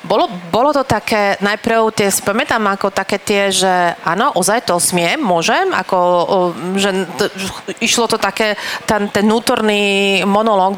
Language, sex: Slovak, female